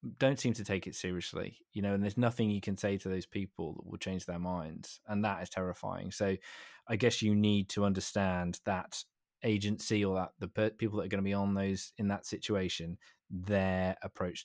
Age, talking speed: 20-39, 210 wpm